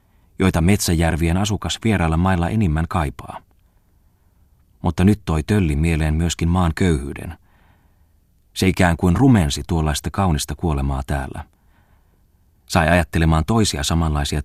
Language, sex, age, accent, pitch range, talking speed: Finnish, male, 30-49, native, 75-90 Hz, 110 wpm